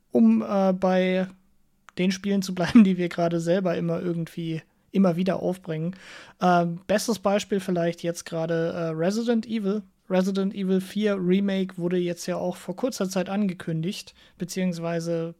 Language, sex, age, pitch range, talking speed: English, male, 30-49, 170-195 Hz, 145 wpm